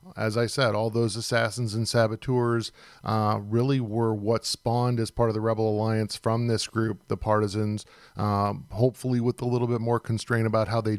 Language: English